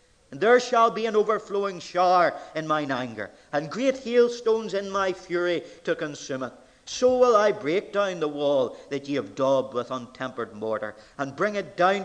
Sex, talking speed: male, 185 wpm